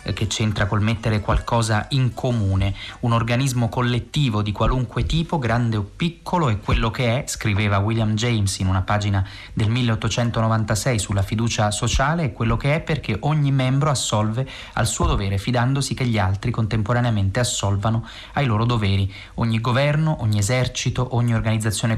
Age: 30-49